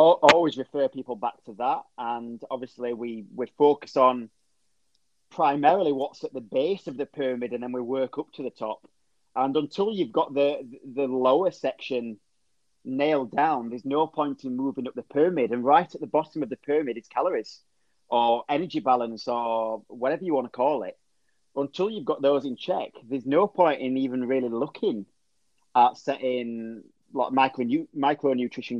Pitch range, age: 120-140 Hz, 30-49